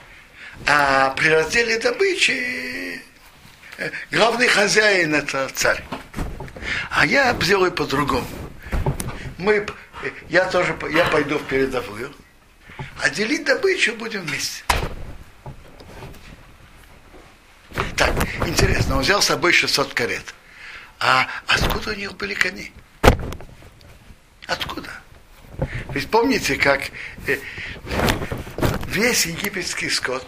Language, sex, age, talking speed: Russian, male, 60-79, 85 wpm